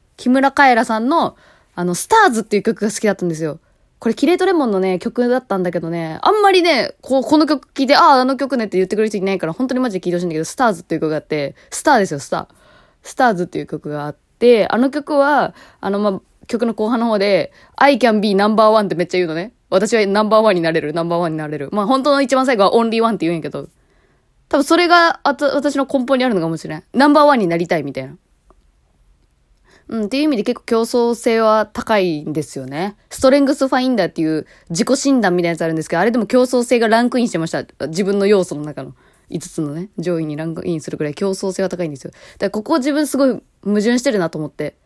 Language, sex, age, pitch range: Japanese, female, 20-39, 175-255 Hz